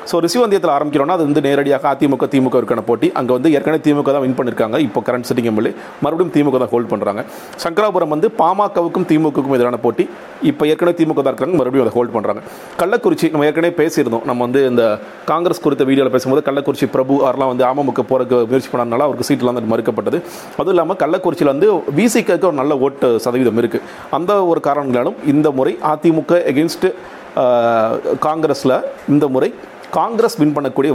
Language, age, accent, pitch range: Tamil, 40-59, native, 125-155 Hz